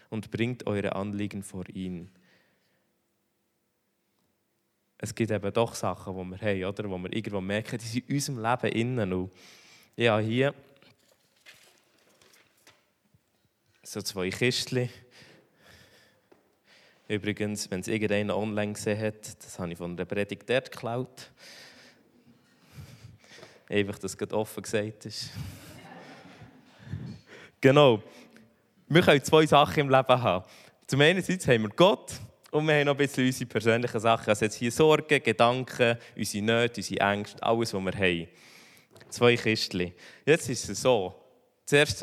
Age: 20-39